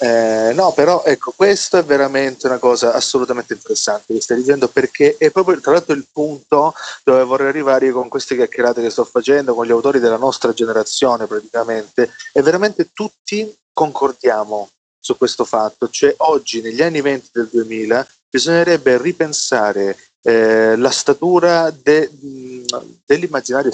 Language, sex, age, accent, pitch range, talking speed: Italian, male, 30-49, native, 115-160 Hz, 150 wpm